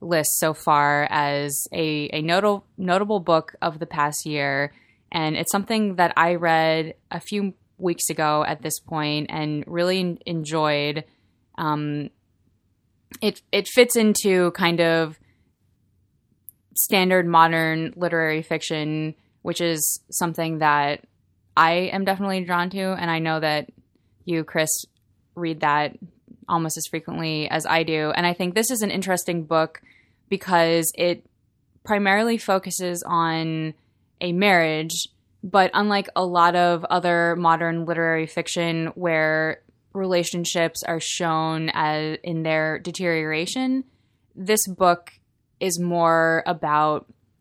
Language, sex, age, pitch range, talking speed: English, female, 20-39, 155-180 Hz, 125 wpm